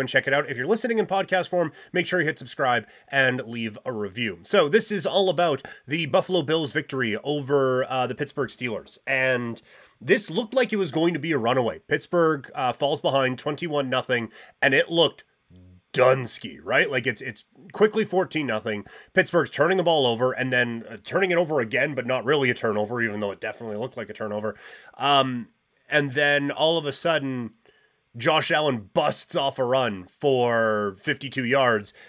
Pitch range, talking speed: 125-165 Hz, 190 wpm